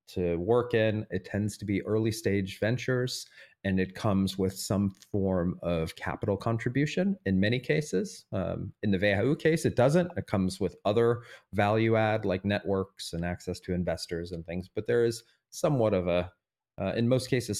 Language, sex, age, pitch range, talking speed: English, male, 30-49, 90-115 Hz, 180 wpm